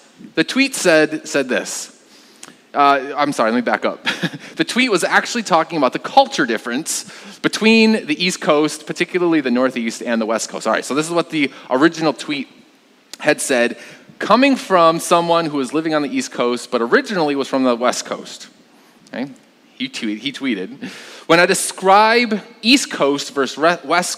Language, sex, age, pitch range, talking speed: English, male, 30-49, 140-220 Hz, 175 wpm